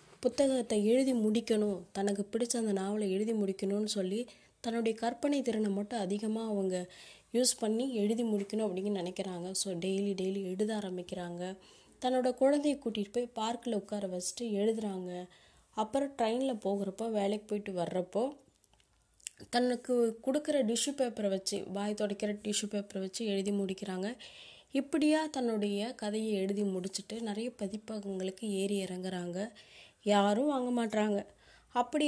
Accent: native